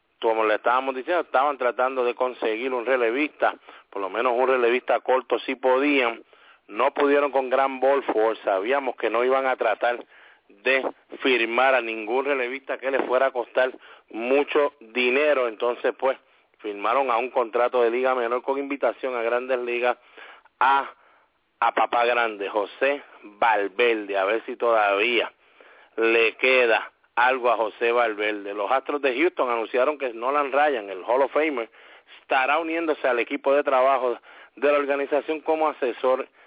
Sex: male